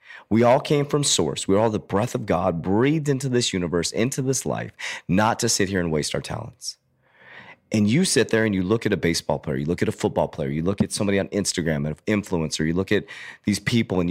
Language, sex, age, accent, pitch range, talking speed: English, male, 30-49, American, 100-135 Hz, 245 wpm